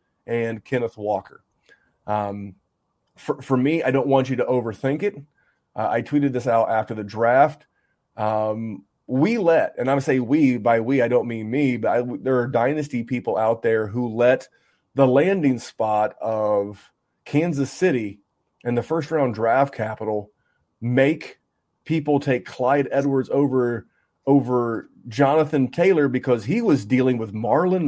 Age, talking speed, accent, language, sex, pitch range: 30-49, 155 wpm, American, English, male, 115-145 Hz